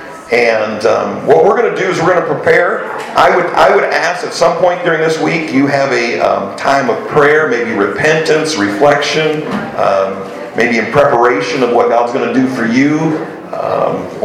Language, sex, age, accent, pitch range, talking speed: English, male, 50-69, American, 140-165 Hz, 195 wpm